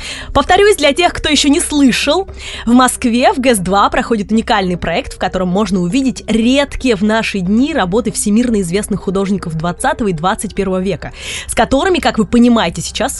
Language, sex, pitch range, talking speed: Russian, female, 200-255 Hz, 165 wpm